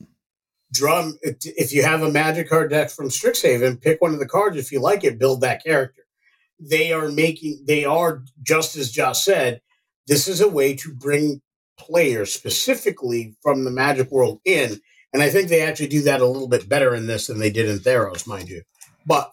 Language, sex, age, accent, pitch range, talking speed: English, male, 50-69, American, 130-165 Hz, 200 wpm